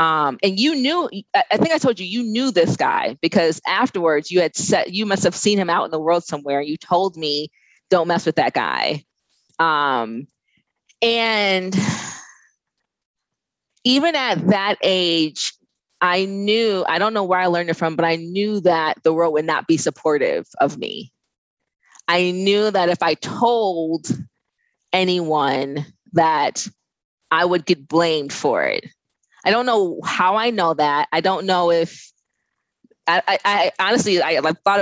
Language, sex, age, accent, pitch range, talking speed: English, female, 20-39, American, 160-215 Hz, 165 wpm